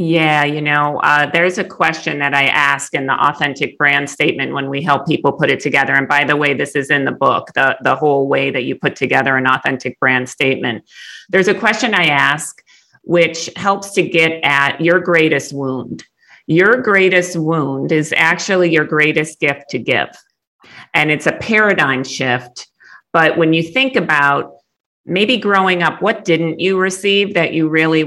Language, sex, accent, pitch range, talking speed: English, female, American, 150-190 Hz, 185 wpm